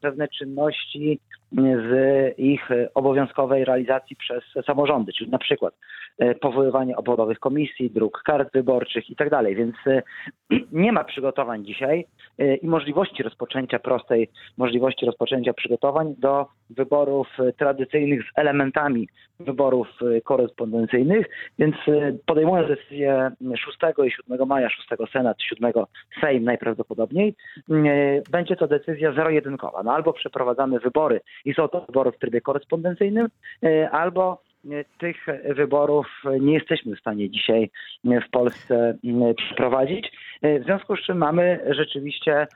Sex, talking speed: male, 115 wpm